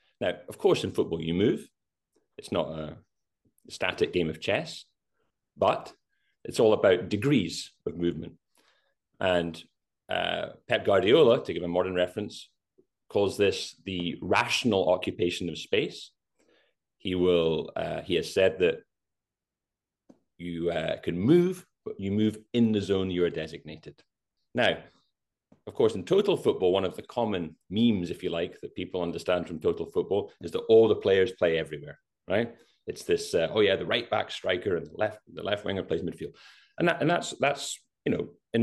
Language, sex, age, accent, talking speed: English, male, 30-49, British, 170 wpm